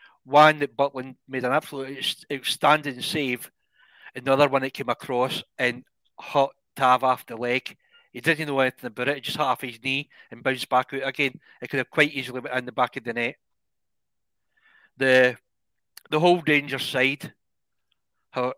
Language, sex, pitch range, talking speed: English, male, 130-155 Hz, 160 wpm